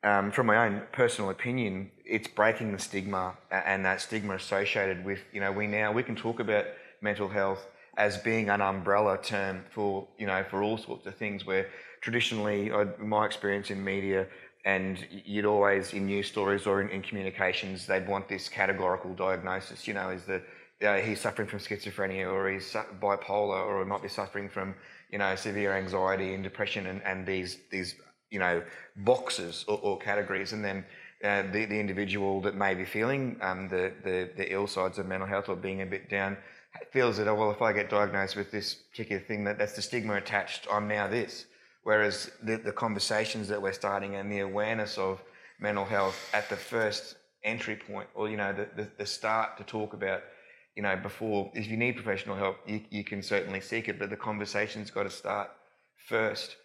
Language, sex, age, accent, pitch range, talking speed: English, male, 20-39, Australian, 95-105 Hz, 200 wpm